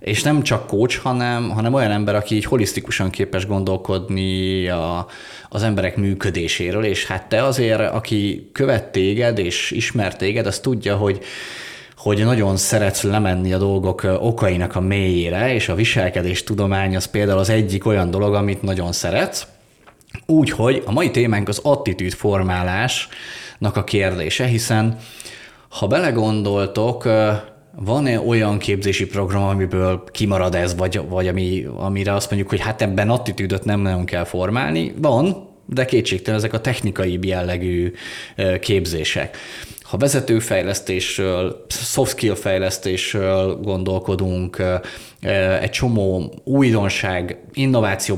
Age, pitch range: 20-39, 95-110 Hz